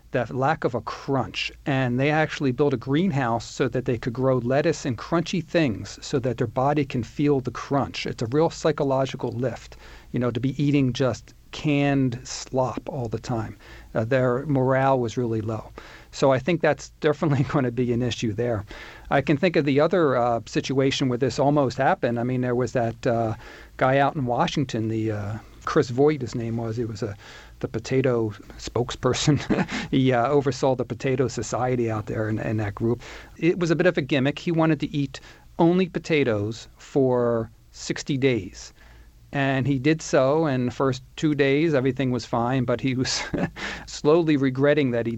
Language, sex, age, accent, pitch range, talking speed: English, male, 50-69, American, 115-145 Hz, 190 wpm